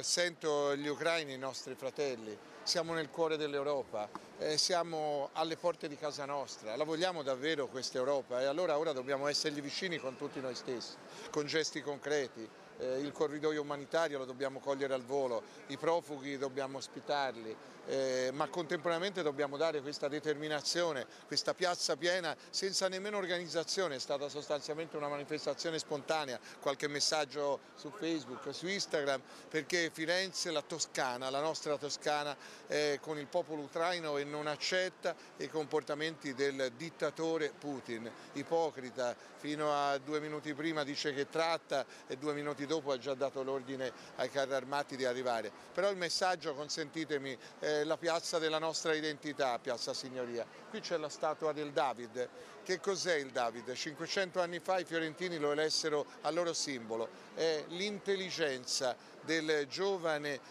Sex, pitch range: male, 140-165 Hz